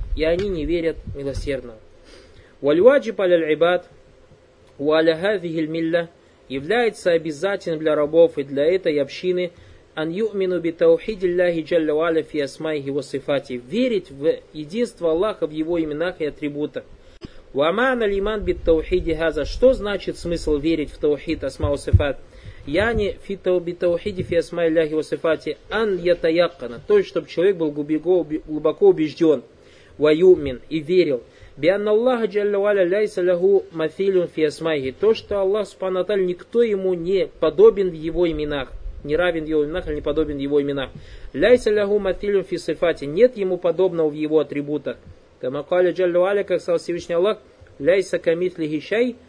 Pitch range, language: 150-195 Hz, Russian